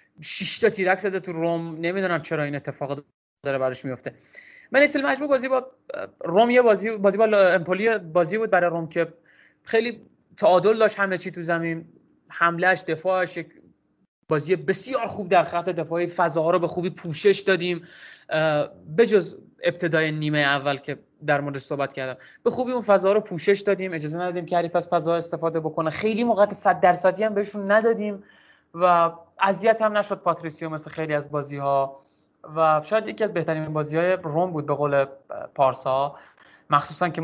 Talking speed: 165 wpm